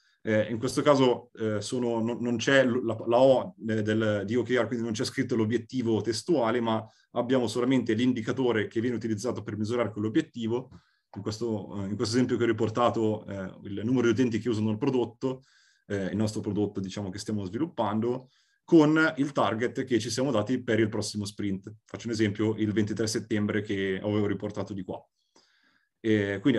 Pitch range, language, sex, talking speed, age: 110-130 Hz, Italian, male, 185 wpm, 30-49